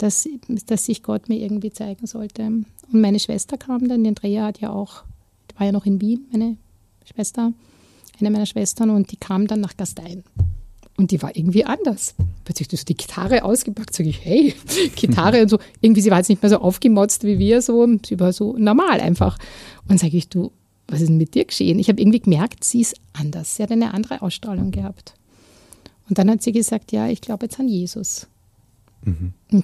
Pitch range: 165-220 Hz